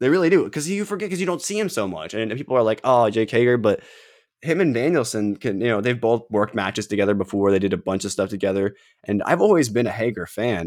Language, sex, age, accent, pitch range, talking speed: English, male, 20-39, American, 95-115 Hz, 265 wpm